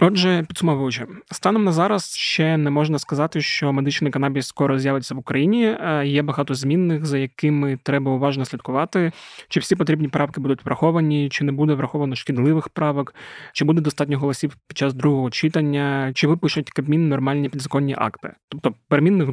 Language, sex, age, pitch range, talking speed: Ukrainian, male, 20-39, 135-155 Hz, 160 wpm